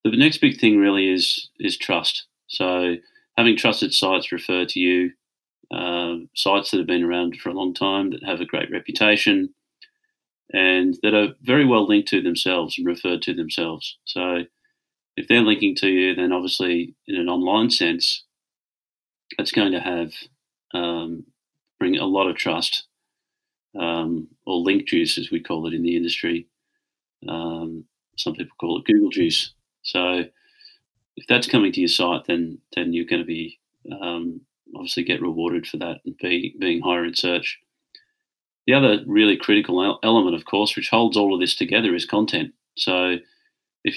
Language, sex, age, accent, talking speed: English, male, 30-49, Australian, 170 wpm